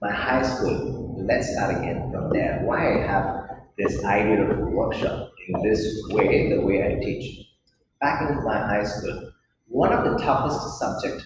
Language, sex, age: Thai, male, 30-49